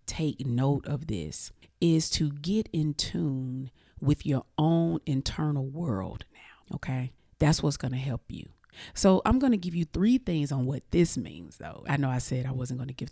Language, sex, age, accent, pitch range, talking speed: English, female, 40-59, American, 130-155 Hz, 200 wpm